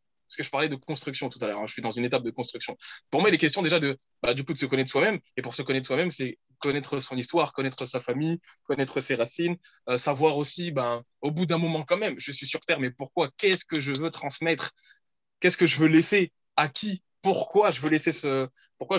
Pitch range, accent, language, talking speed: 130-170 Hz, French, French, 230 wpm